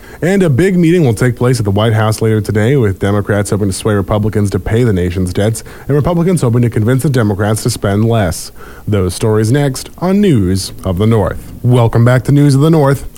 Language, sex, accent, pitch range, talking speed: English, male, American, 100-125 Hz, 225 wpm